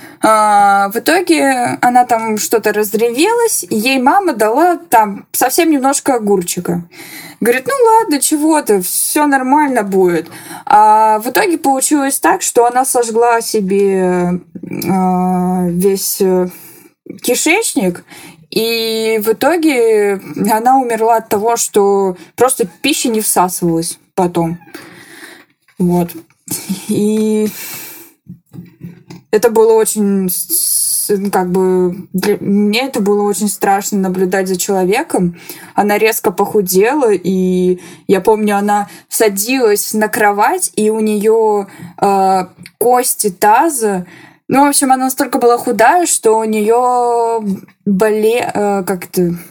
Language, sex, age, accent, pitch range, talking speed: Russian, female, 20-39, native, 185-245 Hz, 110 wpm